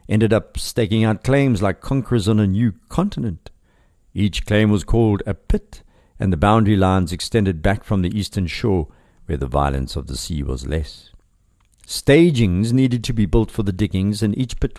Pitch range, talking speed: 90-115 Hz, 185 wpm